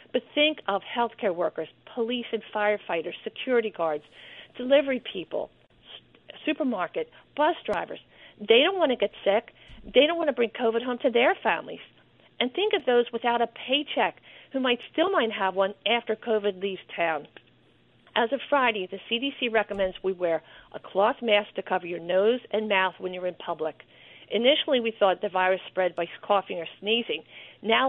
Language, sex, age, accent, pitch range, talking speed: English, female, 50-69, American, 185-245 Hz, 175 wpm